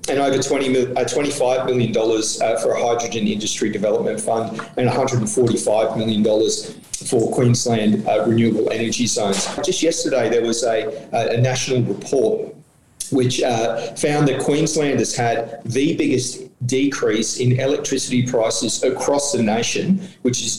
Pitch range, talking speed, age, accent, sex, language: 115-135 Hz, 130 wpm, 40-59, Australian, male, English